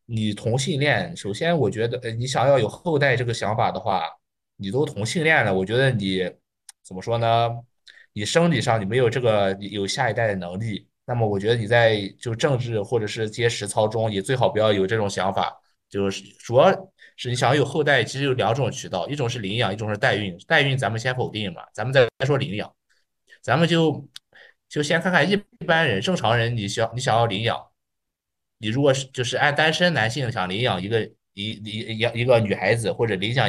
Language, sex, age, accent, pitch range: Chinese, male, 20-39, native, 100-135 Hz